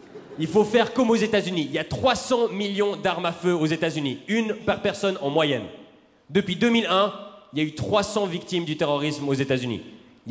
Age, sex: 30-49, male